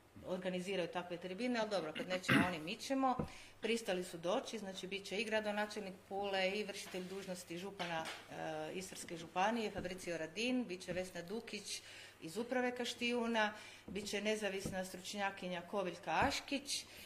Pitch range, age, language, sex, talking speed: 180-210 Hz, 40-59, Croatian, female, 145 wpm